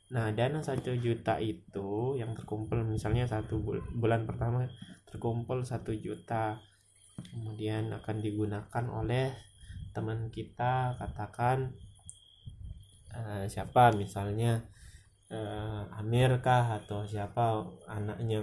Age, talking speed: 20-39, 100 wpm